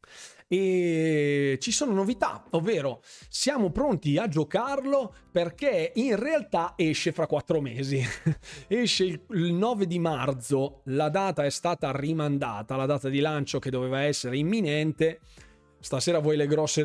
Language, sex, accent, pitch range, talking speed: Italian, male, native, 140-185 Hz, 135 wpm